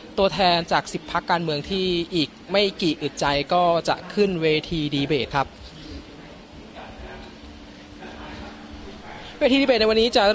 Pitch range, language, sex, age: 130-175 Hz, Thai, male, 20-39